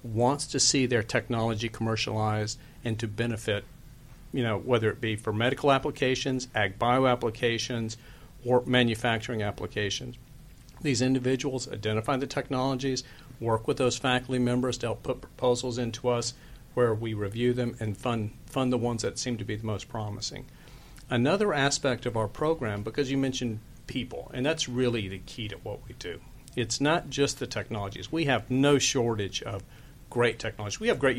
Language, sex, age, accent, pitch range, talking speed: English, male, 50-69, American, 115-135 Hz, 165 wpm